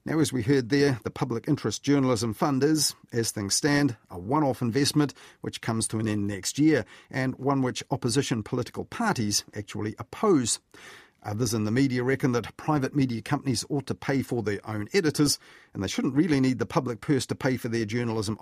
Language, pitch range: English, 115-145 Hz